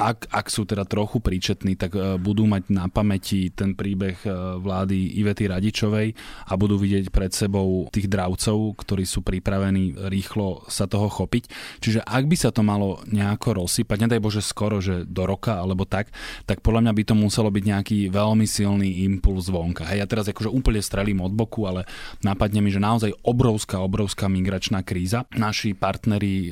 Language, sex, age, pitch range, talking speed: Slovak, male, 20-39, 95-105 Hz, 175 wpm